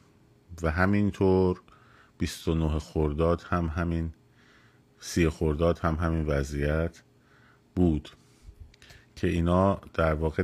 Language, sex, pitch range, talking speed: Persian, male, 80-95 Hz, 100 wpm